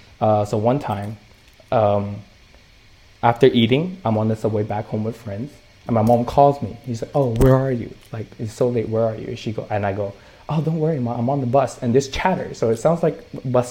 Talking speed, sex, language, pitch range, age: 235 wpm, male, English, 110-145 Hz, 20-39